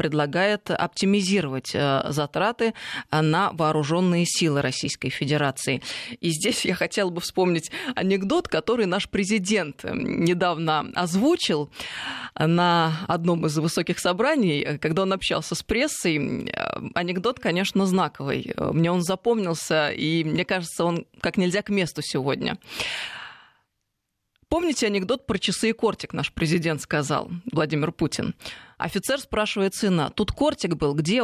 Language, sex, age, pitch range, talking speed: Russian, female, 20-39, 165-205 Hz, 120 wpm